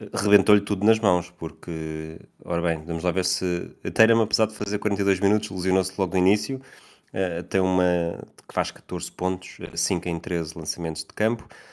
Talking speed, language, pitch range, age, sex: 175 wpm, Portuguese, 85-100 Hz, 20-39, male